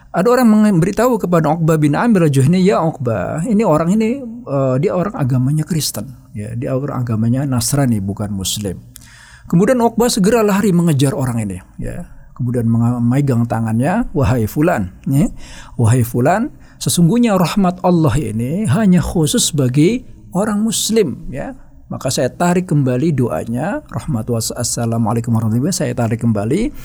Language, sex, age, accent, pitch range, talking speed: Indonesian, male, 50-69, native, 115-160 Hz, 135 wpm